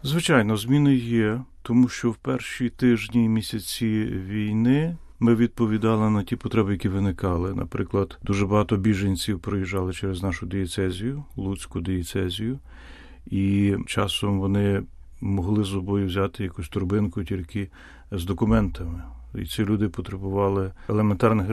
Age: 40-59